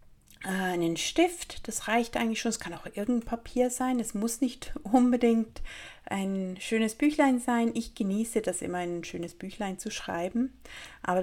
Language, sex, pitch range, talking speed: German, female, 190-250 Hz, 160 wpm